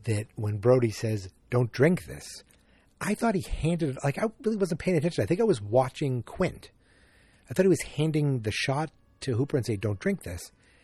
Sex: male